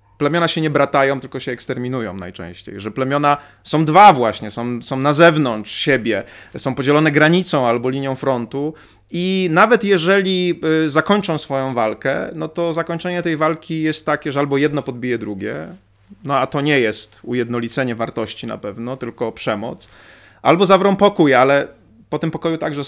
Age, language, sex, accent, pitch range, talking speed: 30-49, Polish, male, native, 115-160 Hz, 160 wpm